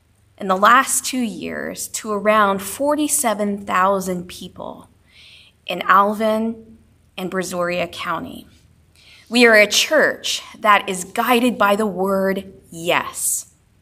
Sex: female